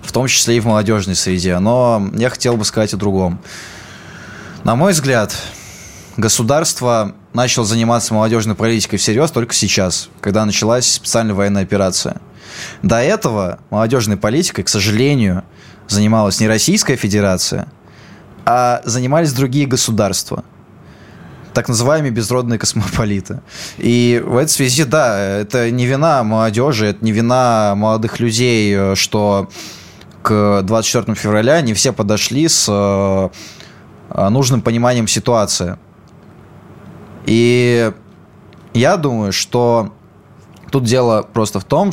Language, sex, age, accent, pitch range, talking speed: Russian, male, 20-39, native, 100-120 Hz, 120 wpm